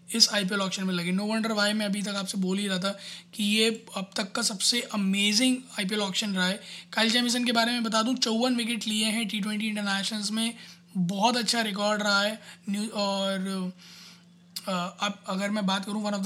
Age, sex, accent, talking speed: 20-39, male, native, 205 wpm